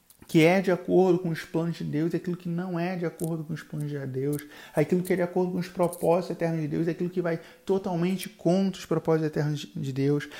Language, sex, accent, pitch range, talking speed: Portuguese, male, Brazilian, 160-185 Hz, 235 wpm